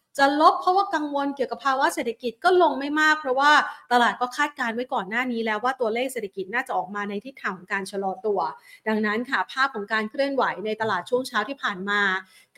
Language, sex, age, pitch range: Thai, female, 30-49, 215-275 Hz